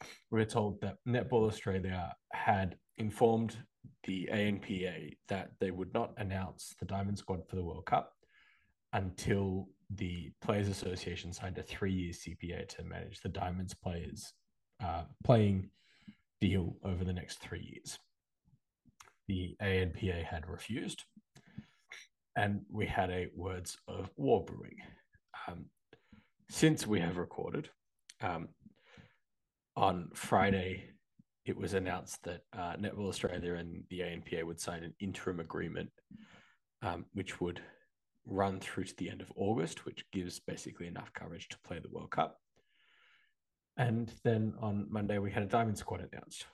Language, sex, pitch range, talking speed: English, male, 90-110 Hz, 140 wpm